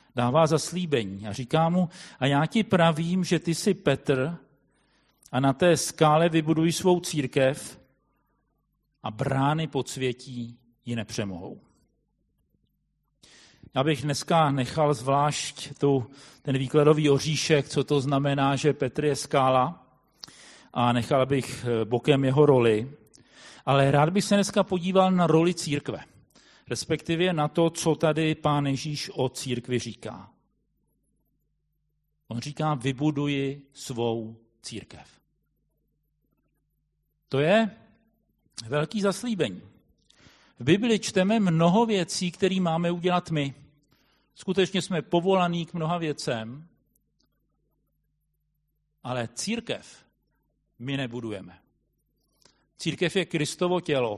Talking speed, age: 110 wpm, 40-59